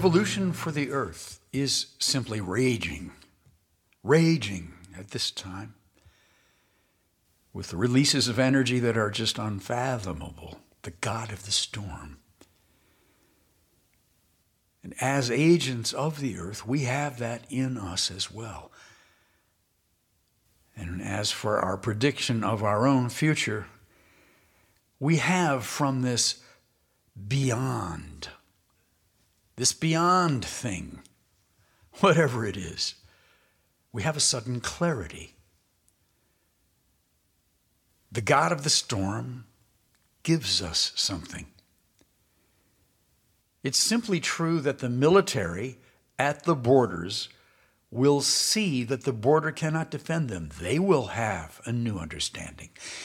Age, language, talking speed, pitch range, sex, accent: 60-79, English, 105 wpm, 95-135 Hz, male, American